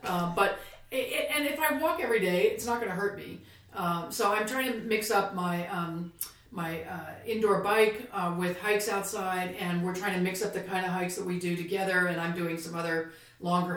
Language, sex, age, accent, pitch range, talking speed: English, female, 40-59, American, 170-200 Hz, 220 wpm